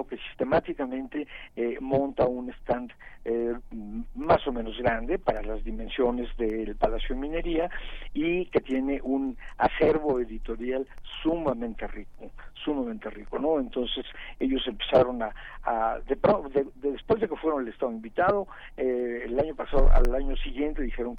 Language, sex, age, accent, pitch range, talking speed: Spanish, male, 50-69, Mexican, 115-155 Hz, 145 wpm